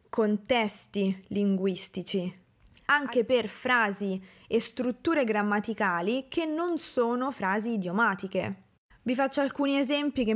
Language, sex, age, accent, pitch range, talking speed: Italian, female, 20-39, native, 200-250 Hz, 105 wpm